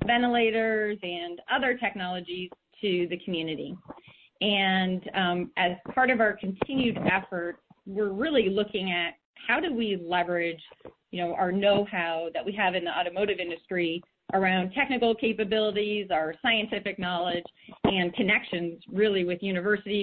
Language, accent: English, American